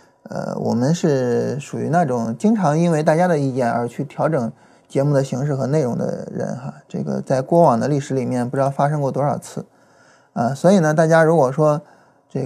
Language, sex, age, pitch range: Chinese, male, 20-39, 135-180 Hz